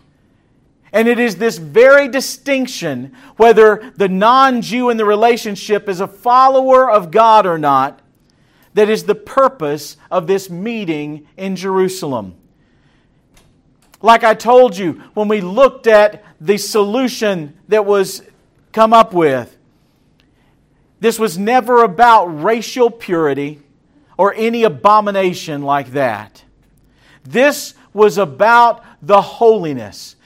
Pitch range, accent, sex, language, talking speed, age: 160-230 Hz, American, male, English, 115 wpm, 50-69